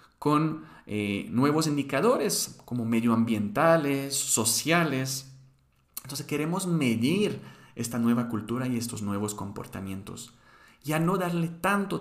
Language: Spanish